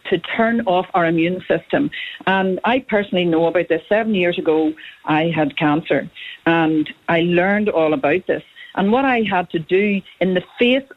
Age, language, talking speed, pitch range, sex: 50-69, English, 180 wpm, 170-220 Hz, female